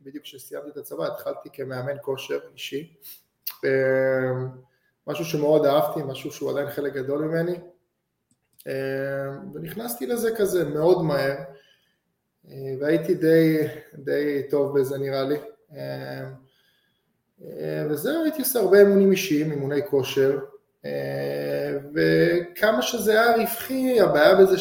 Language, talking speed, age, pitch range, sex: Hebrew, 105 wpm, 20-39, 140-190 Hz, male